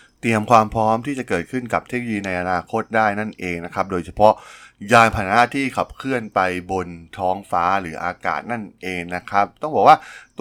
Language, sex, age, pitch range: Thai, male, 20-39, 90-115 Hz